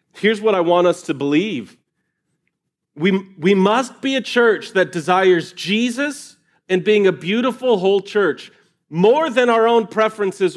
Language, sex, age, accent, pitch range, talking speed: English, male, 40-59, American, 140-205 Hz, 155 wpm